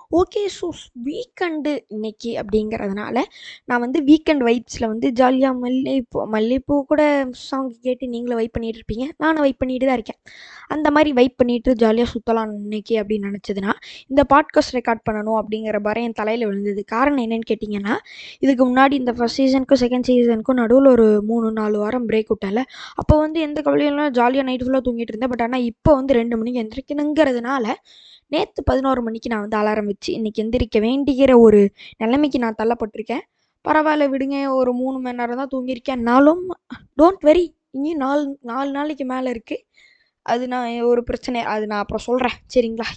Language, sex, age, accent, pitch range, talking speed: Tamil, female, 20-39, native, 225-280 Hz, 160 wpm